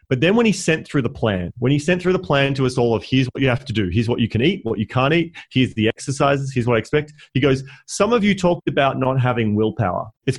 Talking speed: 295 wpm